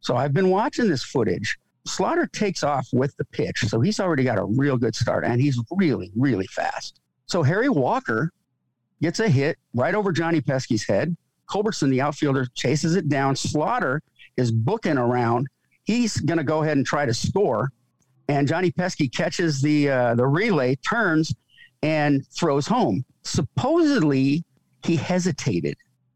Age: 50-69